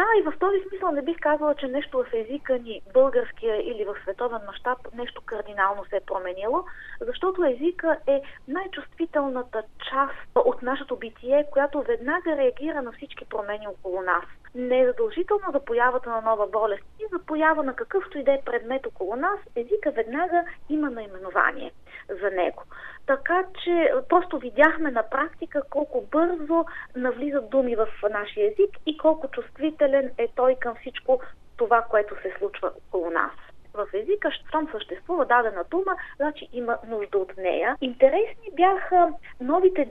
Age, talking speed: 30-49, 160 wpm